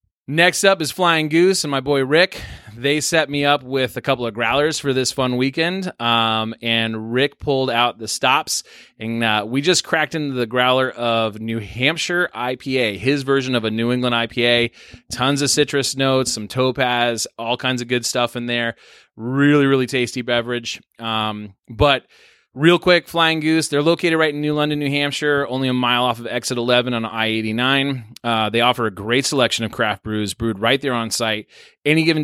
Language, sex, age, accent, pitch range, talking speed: English, male, 30-49, American, 115-145 Hz, 190 wpm